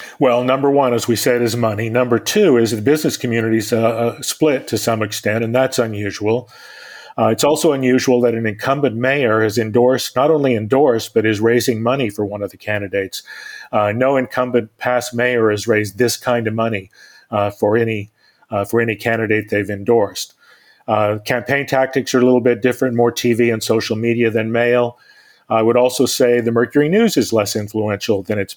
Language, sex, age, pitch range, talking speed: English, male, 40-59, 105-125 Hz, 190 wpm